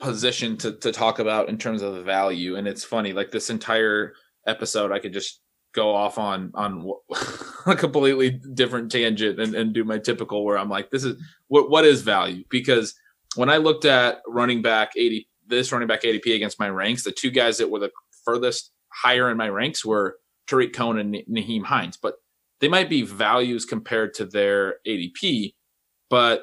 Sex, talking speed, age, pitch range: male, 190 wpm, 20-39, 105-145 Hz